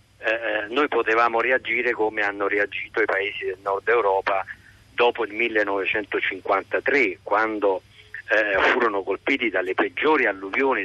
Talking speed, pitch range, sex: 120 wpm, 105-170 Hz, male